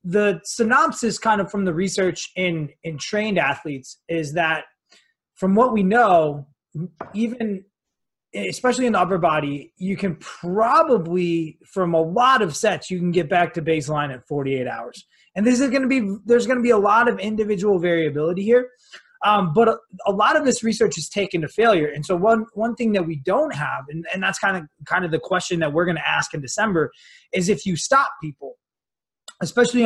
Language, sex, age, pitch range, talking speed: English, male, 20-39, 160-210 Hz, 200 wpm